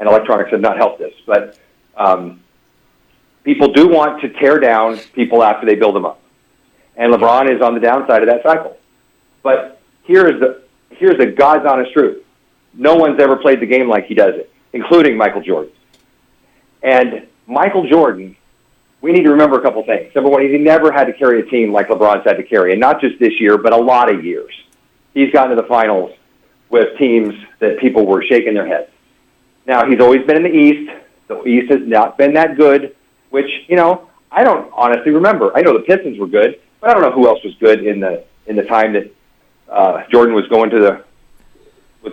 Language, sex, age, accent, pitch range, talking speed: English, male, 50-69, American, 120-170 Hz, 205 wpm